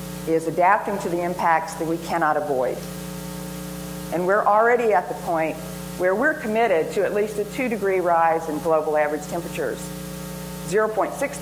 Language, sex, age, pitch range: English, female, 50-69, 170-210 Hz